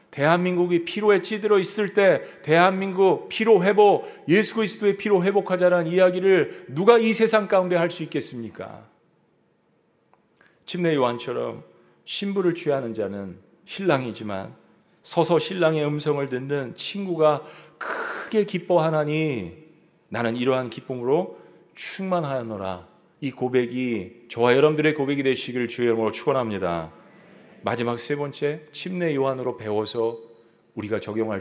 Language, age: Korean, 40-59